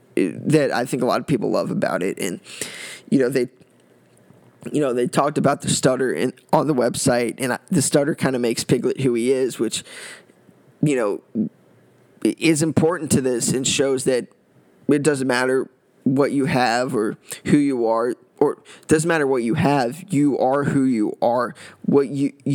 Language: English